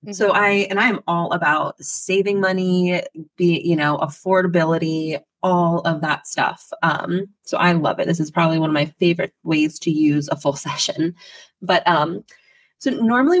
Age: 20-39